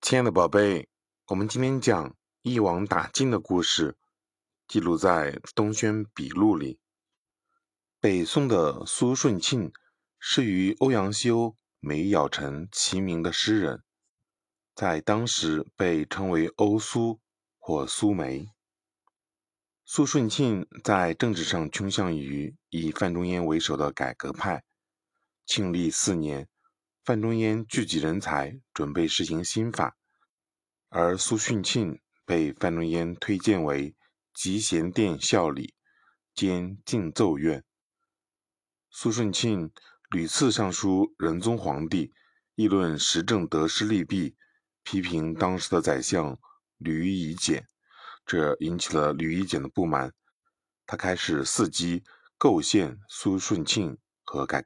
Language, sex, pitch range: Chinese, male, 85-115 Hz